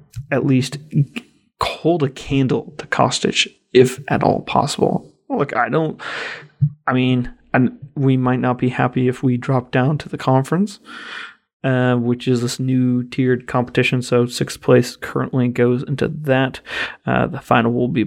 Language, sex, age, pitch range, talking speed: English, male, 30-49, 125-140 Hz, 160 wpm